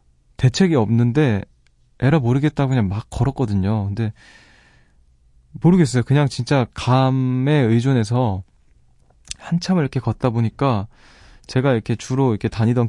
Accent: native